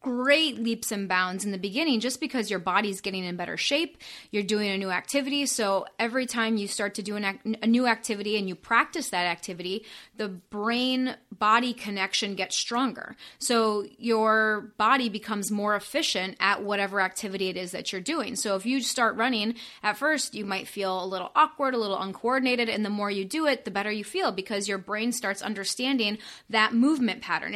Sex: female